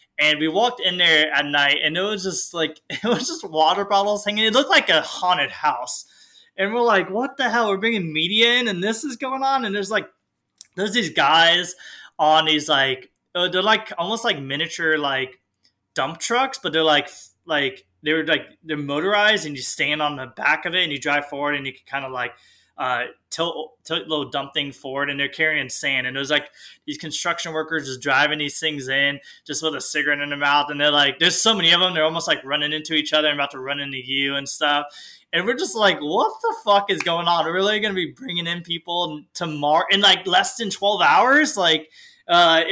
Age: 20-39